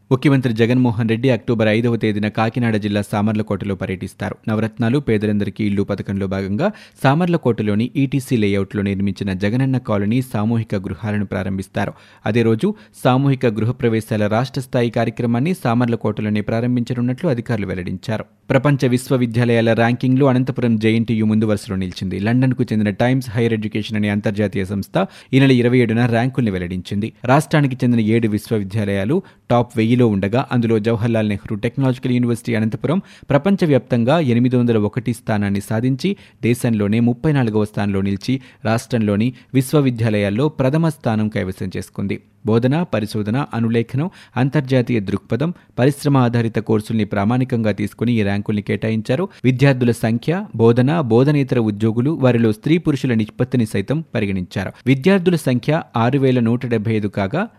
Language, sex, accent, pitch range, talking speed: Telugu, male, native, 105-130 Hz, 115 wpm